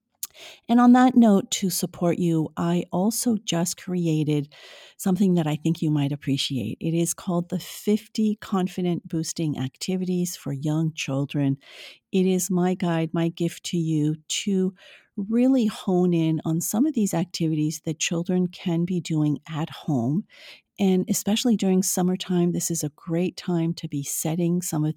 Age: 50-69